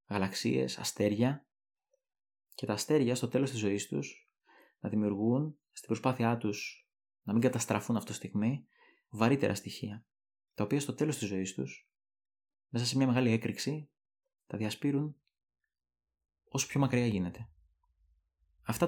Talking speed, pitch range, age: 130 wpm, 95-120 Hz, 20-39